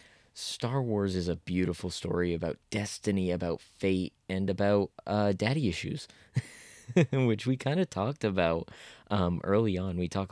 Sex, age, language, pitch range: male, 20-39, English, 85-100 Hz